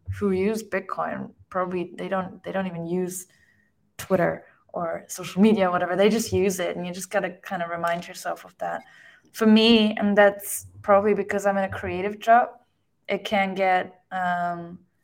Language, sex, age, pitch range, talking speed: English, female, 20-39, 185-210 Hz, 180 wpm